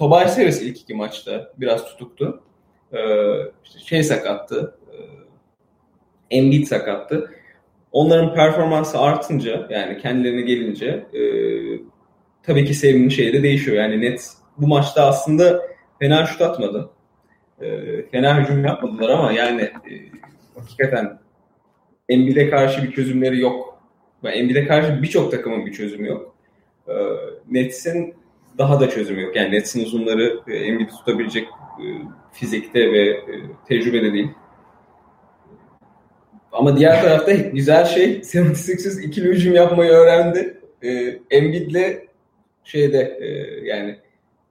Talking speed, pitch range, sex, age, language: 110 wpm, 125-175 Hz, male, 30-49, English